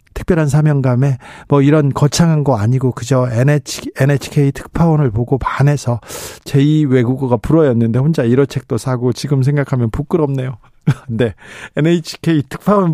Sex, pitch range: male, 130-195 Hz